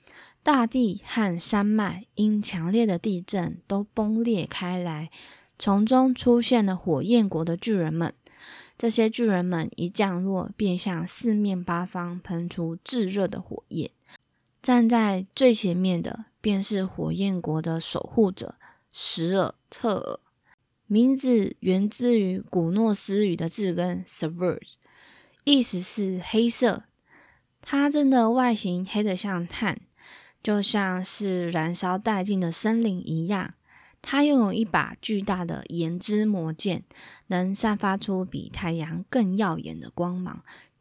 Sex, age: female, 20-39